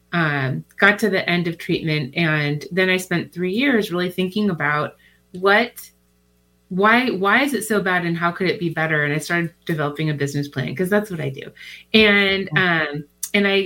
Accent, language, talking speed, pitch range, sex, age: American, English, 195 wpm, 160-210 Hz, female, 30-49